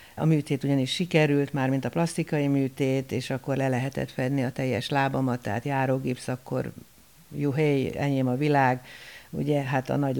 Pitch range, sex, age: 130-155 Hz, female, 60-79